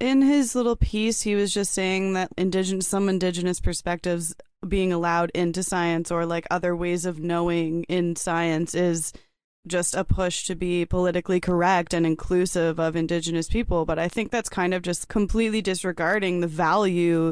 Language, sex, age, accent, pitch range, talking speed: English, female, 20-39, American, 170-195 Hz, 165 wpm